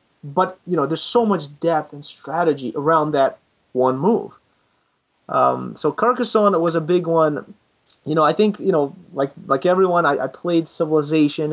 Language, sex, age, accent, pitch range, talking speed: English, male, 30-49, American, 150-190 Hz, 170 wpm